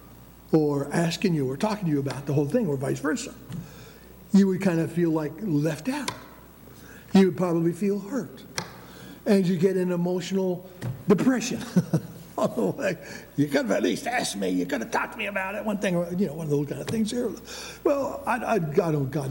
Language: English